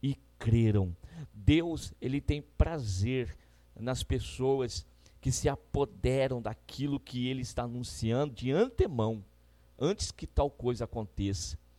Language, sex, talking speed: Portuguese, male, 110 wpm